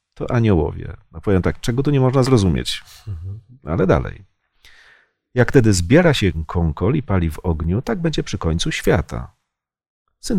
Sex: male